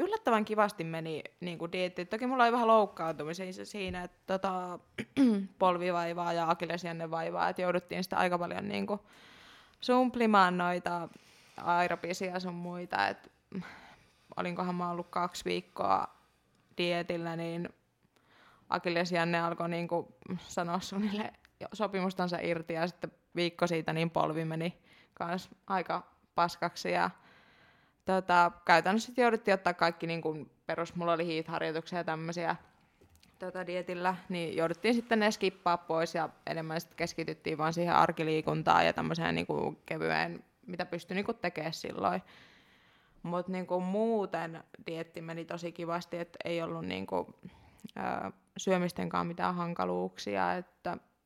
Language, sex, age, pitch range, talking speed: Finnish, female, 20-39, 165-185 Hz, 120 wpm